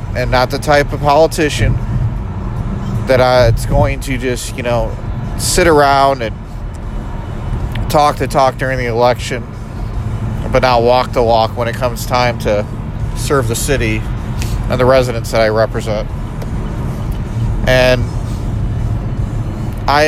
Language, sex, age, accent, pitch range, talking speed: English, male, 40-59, American, 115-130 Hz, 130 wpm